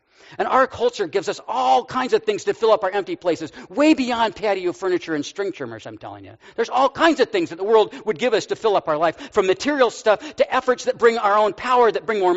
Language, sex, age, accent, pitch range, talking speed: English, male, 50-69, American, 205-295 Hz, 260 wpm